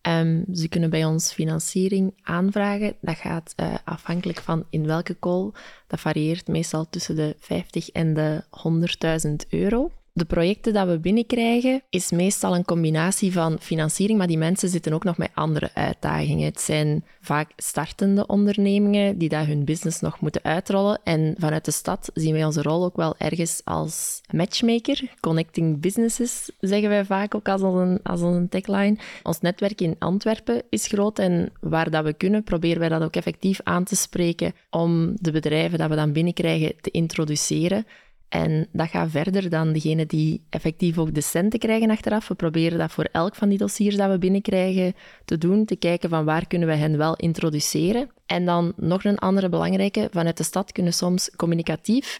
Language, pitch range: Dutch, 160-195 Hz